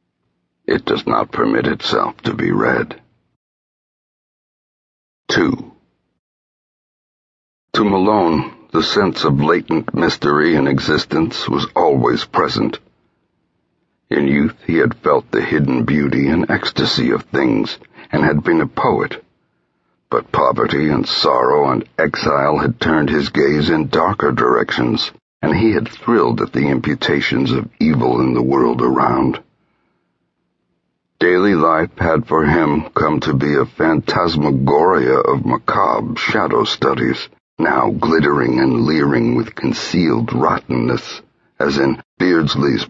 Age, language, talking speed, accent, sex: 60-79, English, 125 wpm, American, male